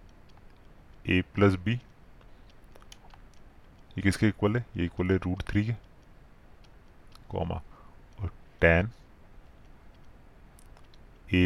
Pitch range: 90-105 Hz